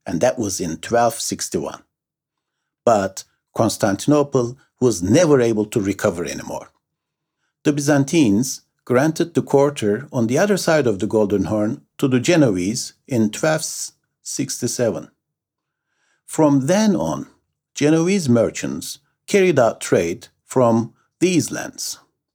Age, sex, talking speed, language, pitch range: 60-79, male, 115 wpm, English, 100-150 Hz